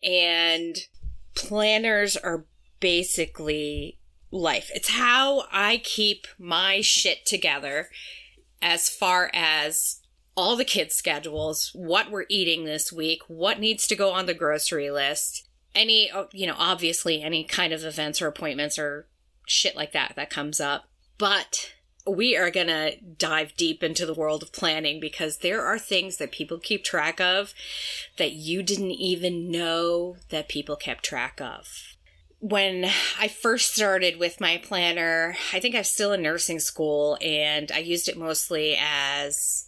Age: 30-49